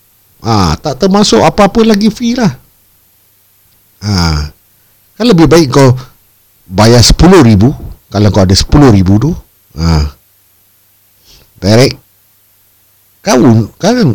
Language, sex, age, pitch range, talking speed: Malay, male, 50-69, 90-115 Hz, 100 wpm